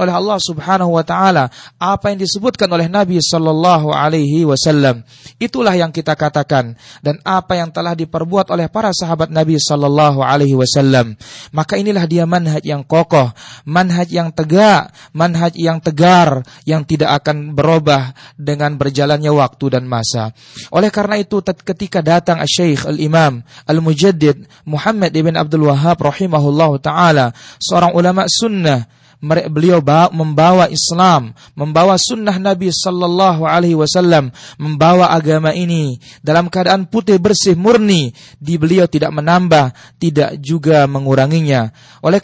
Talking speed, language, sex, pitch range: 130 wpm, Malay, male, 150-185 Hz